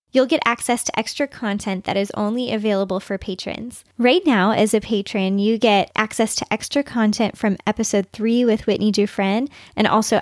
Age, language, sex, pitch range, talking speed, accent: 10-29, English, female, 200-235 Hz, 180 wpm, American